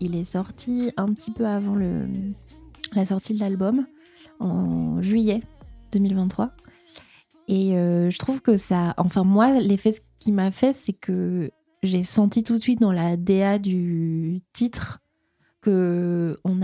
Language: French